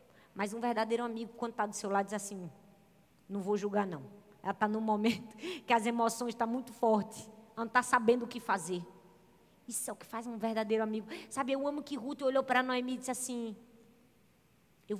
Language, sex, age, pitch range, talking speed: Portuguese, female, 20-39, 205-260 Hz, 215 wpm